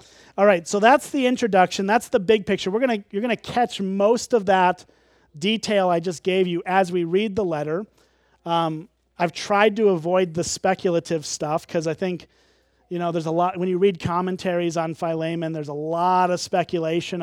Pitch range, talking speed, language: 160-200 Hz, 200 wpm, English